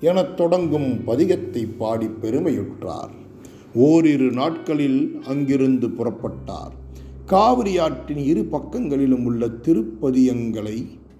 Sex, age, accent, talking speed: male, 50-69, native, 80 wpm